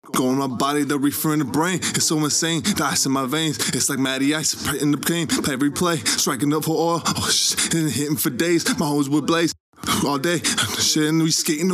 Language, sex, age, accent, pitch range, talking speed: English, male, 20-39, American, 115-155 Hz, 240 wpm